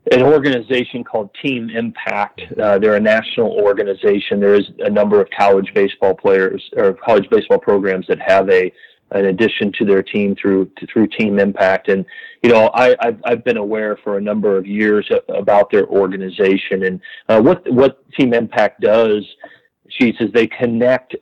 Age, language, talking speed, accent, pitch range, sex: 40-59, English, 175 wpm, American, 105-135 Hz, male